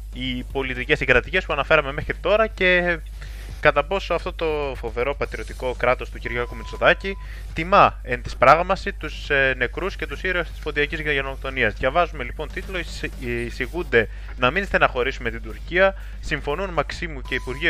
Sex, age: male, 20-39